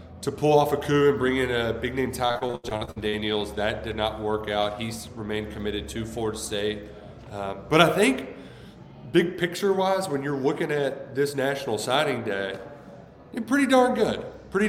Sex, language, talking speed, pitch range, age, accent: male, English, 175 wpm, 115-155 Hz, 30-49, American